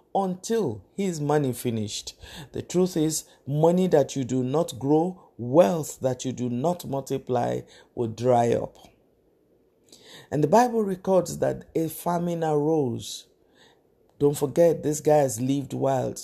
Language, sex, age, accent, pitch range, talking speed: English, male, 50-69, Nigerian, 120-155 Hz, 135 wpm